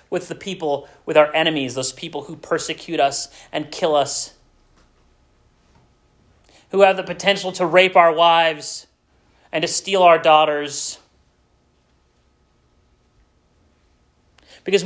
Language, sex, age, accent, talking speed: English, male, 30-49, American, 115 wpm